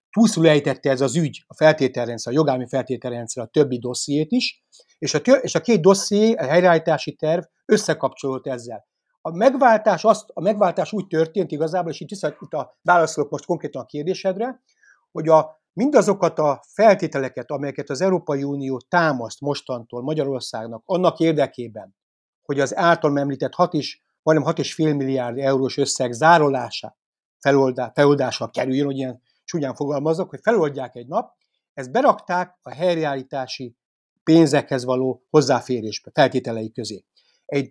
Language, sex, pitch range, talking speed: Hungarian, male, 130-175 Hz, 145 wpm